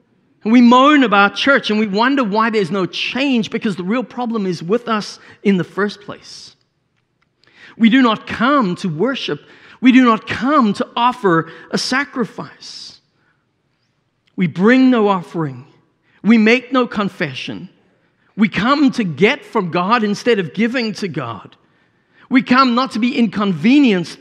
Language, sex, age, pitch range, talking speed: English, male, 50-69, 160-260 Hz, 150 wpm